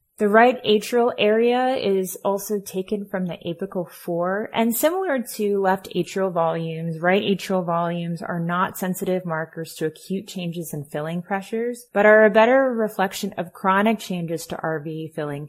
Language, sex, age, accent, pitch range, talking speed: English, female, 20-39, American, 175-220 Hz, 160 wpm